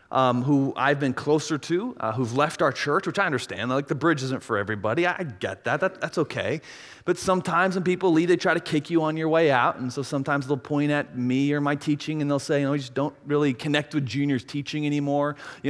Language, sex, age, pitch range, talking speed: English, male, 30-49, 140-175 Hz, 245 wpm